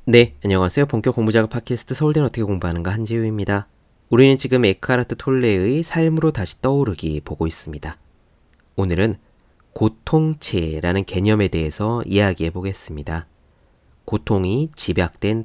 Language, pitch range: Korean, 85-130 Hz